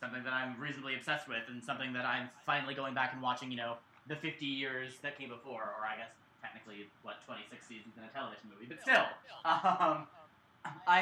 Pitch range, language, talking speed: 120-155 Hz, English, 205 wpm